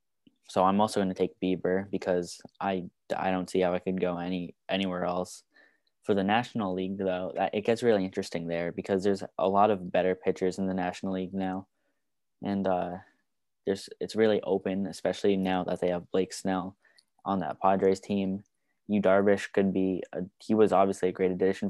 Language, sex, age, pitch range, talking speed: English, male, 10-29, 95-100 Hz, 190 wpm